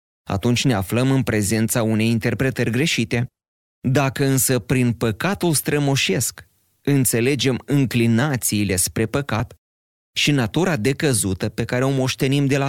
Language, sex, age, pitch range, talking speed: Romanian, male, 30-49, 105-135 Hz, 125 wpm